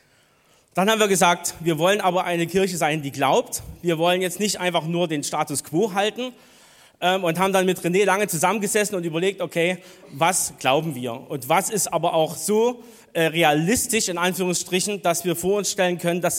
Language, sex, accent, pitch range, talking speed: German, male, German, 160-195 Hz, 185 wpm